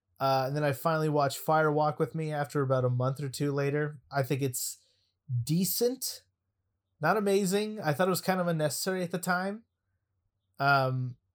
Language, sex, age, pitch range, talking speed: English, male, 30-49, 125-165 Hz, 175 wpm